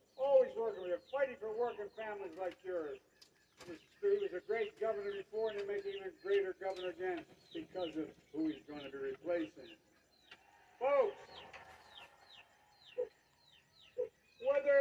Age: 60-79